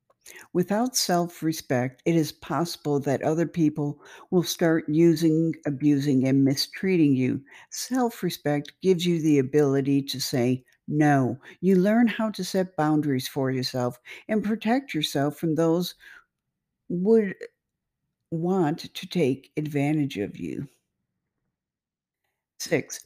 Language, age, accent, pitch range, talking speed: English, 60-79, American, 145-190 Hz, 115 wpm